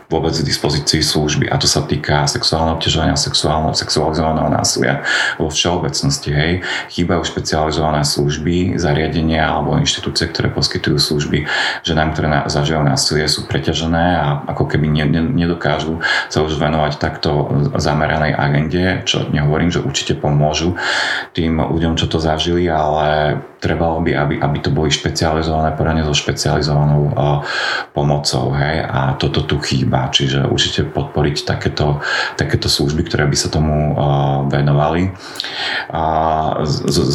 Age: 30-49